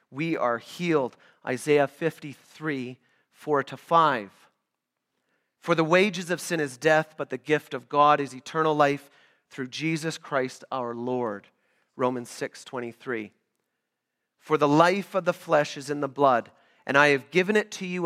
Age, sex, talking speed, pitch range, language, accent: 30-49, male, 165 wpm, 150-205 Hz, English, American